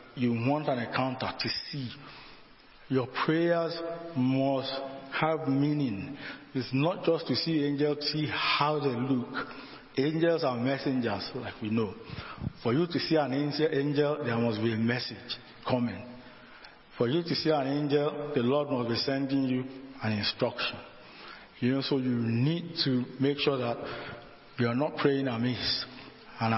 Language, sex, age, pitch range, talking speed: English, male, 50-69, 125-145 Hz, 155 wpm